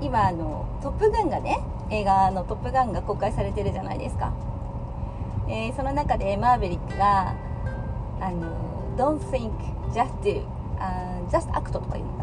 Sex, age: female, 30-49